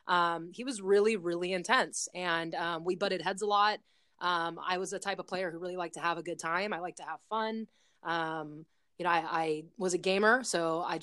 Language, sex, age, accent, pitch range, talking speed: English, female, 20-39, American, 170-195 Hz, 235 wpm